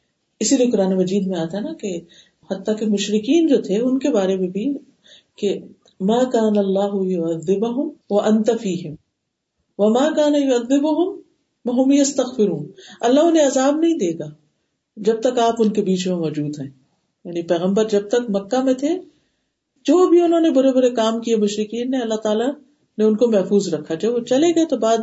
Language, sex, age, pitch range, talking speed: Urdu, female, 50-69, 195-275 Hz, 170 wpm